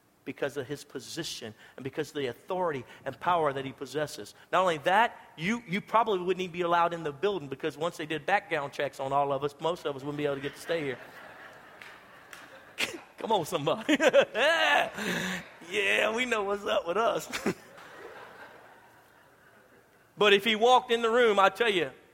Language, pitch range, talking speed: English, 155-220 Hz, 185 wpm